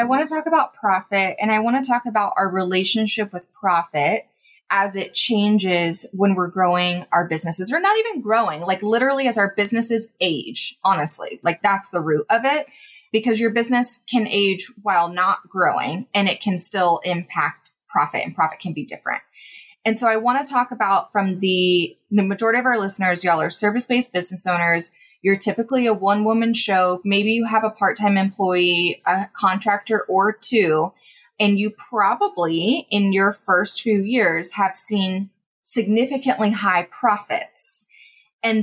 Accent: American